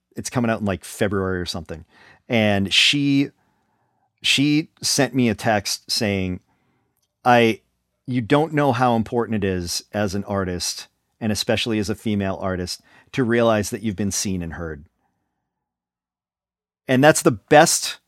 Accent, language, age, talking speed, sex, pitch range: American, English, 40-59, 150 wpm, male, 100-130 Hz